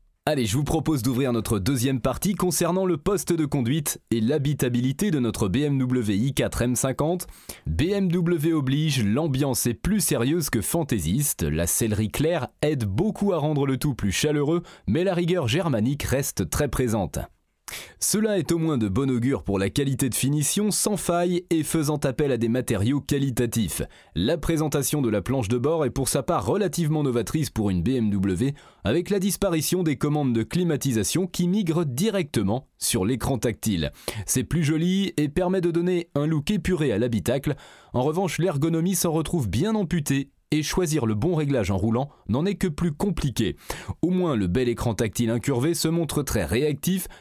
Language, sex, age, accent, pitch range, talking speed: French, male, 30-49, French, 120-175 Hz, 175 wpm